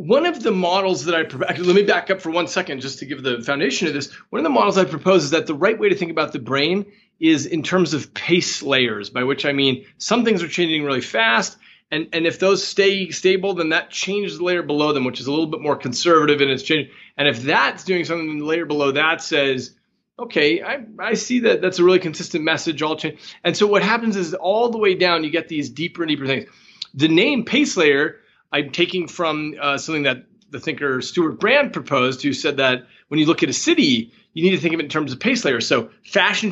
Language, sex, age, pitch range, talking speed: English, male, 30-49, 140-185 Hz, 250 wpm